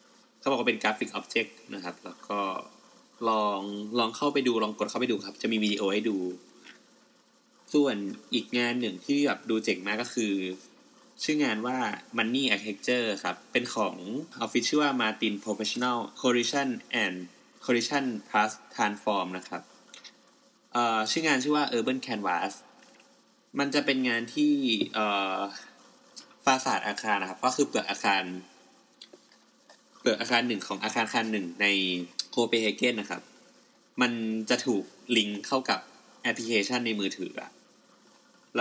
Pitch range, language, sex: 100-125 Hz, Thai, male